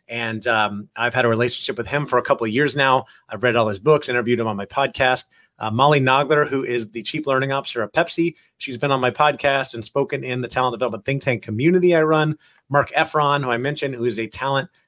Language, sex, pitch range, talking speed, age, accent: English, male, 120-145 Hz, 240 wpm, 30-49, American